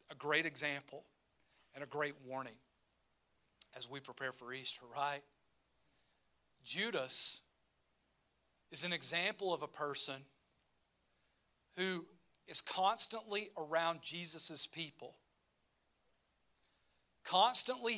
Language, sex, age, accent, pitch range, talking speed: English, male, 40-59, American, 125-180 Hz, 90 wpm